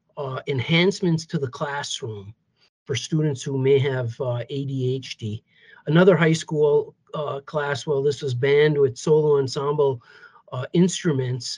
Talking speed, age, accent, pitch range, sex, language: 135 wpm, 50-69, American, 135-170 Hz, male, English